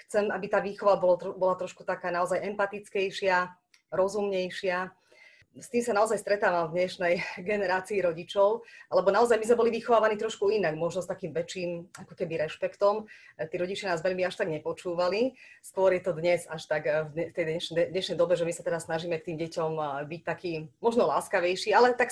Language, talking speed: Slovak, 175 wpm